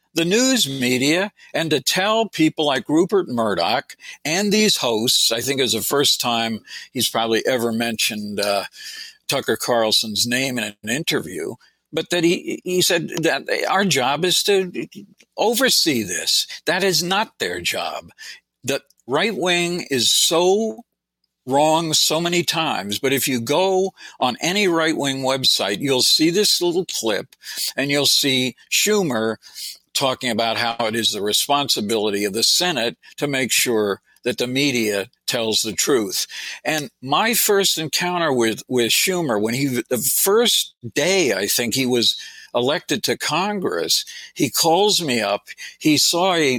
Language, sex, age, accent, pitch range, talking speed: English, male, 60-79, American, 115-190 Hz, 155 wpm